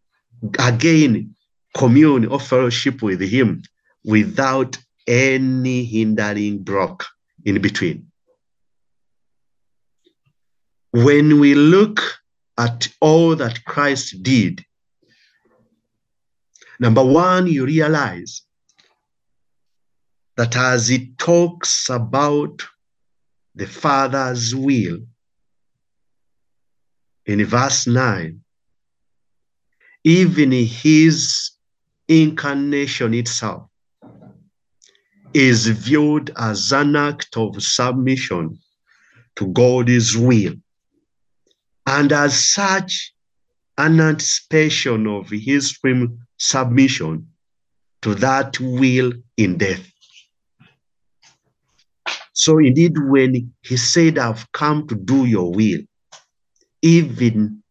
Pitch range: 115-145 Hz